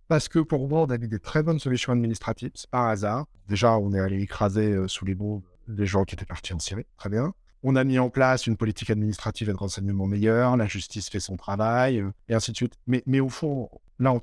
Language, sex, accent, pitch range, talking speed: French, male, French, 105-130 Hz, 255 wpm